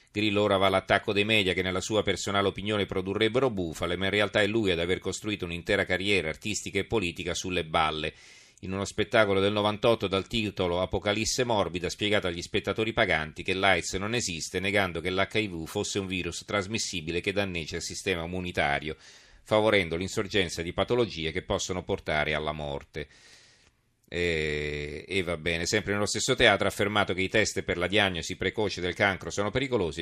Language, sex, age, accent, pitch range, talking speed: Italian, male, 40-59, native, 85-105 Hz, 175 wpm